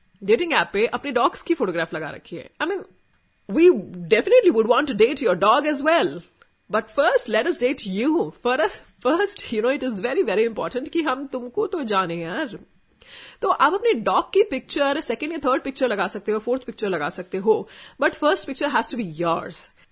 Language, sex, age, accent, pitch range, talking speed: Hindi, female, 30-49, native, 210-290 Hz, 190 wpm